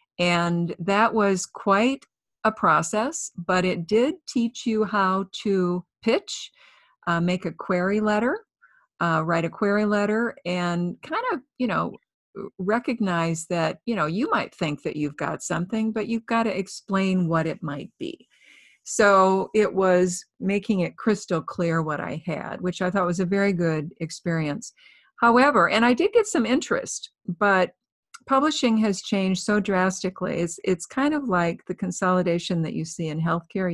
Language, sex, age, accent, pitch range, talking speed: English, female, 50-69, American, 170-215 Hz, 165 wpm